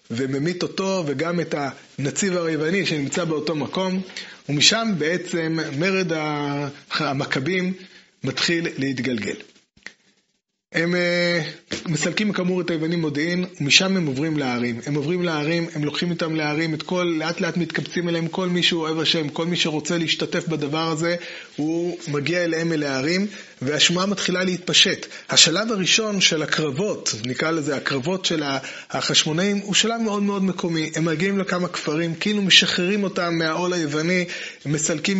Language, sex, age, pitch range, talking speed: Hebrew, male, 30-49, 155-185 Hz, 135 wpm